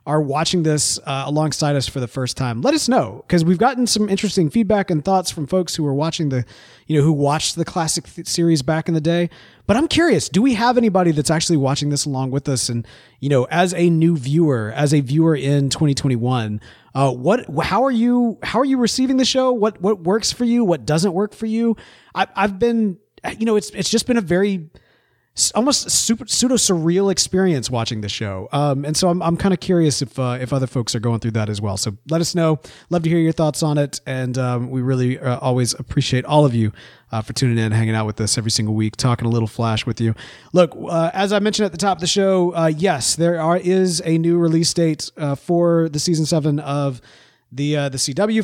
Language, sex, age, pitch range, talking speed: English, male, 30-49, 130-190 Hz, 240 wpm